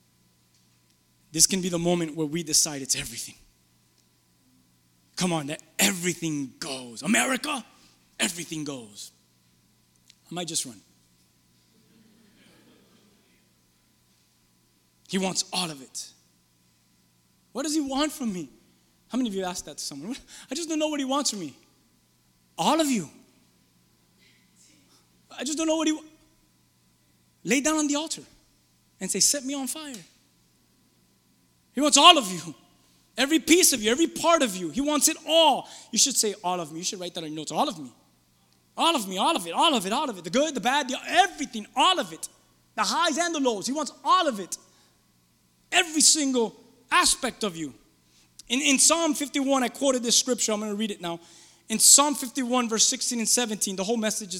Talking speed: 180 wpm